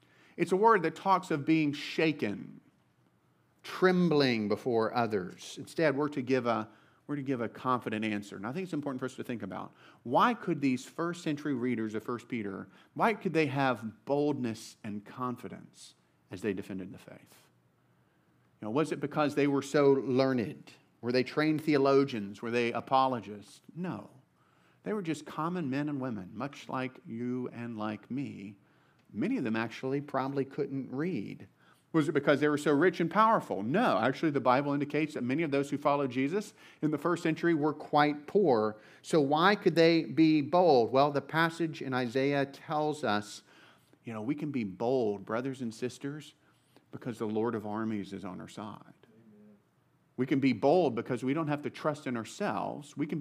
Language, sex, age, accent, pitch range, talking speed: English, male, 40-59, American, 120-155 Hz, 185 wpm